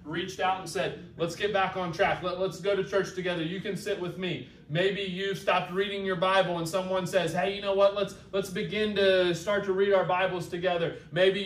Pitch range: 165-200 Hz